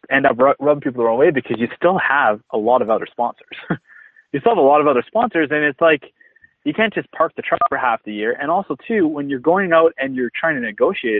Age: 20-39